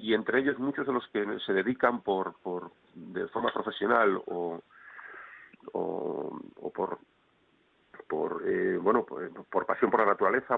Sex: male